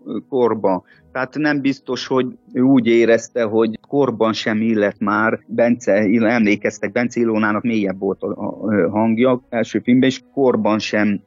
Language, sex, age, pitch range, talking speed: Hungarian, male, 30-49, 100-120 Hz, 140 wpm